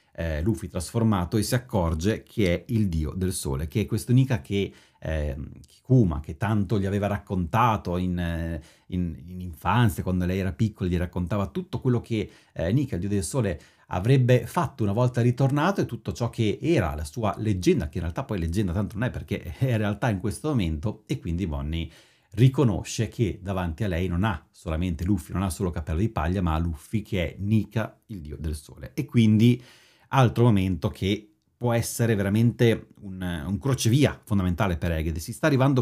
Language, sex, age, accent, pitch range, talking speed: Italian, male, 30-49, native, 90-120 Hz, 190 wpm